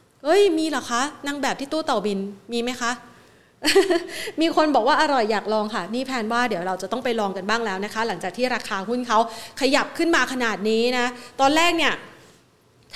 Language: Thai